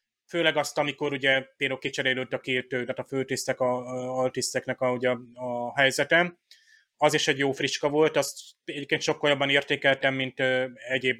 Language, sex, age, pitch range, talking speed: Hungarian, male, 30-49, 130-145 Hz, 165 wpm